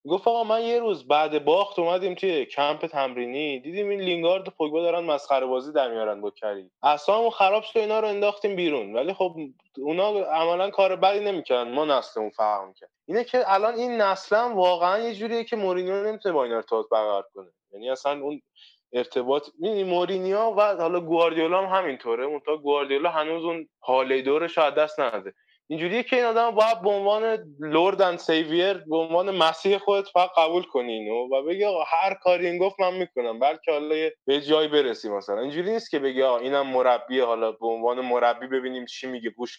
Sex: male